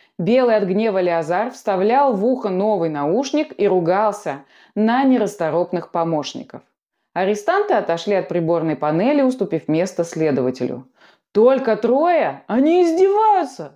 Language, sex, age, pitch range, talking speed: Russian, female, 20-39, 175-265 Hz, 115 wpm